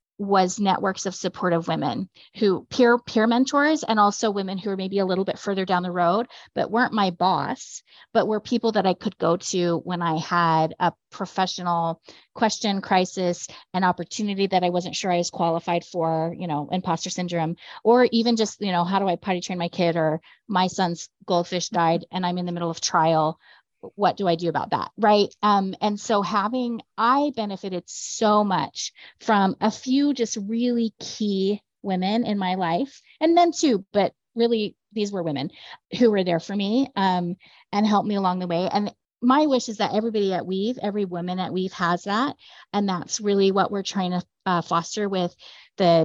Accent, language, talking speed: American, English, 195 wpm